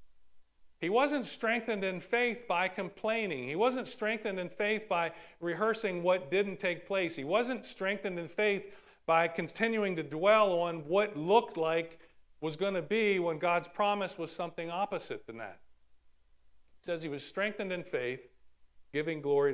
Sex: male